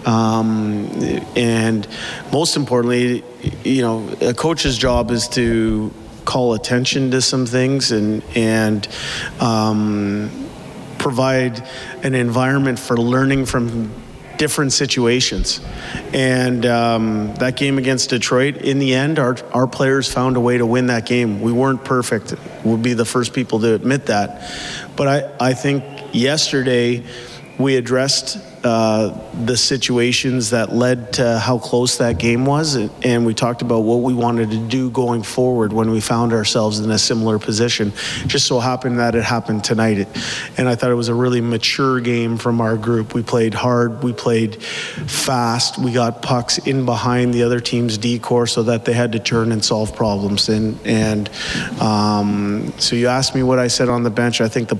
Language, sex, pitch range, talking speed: English, male, 115-130 Hz, 170 wpm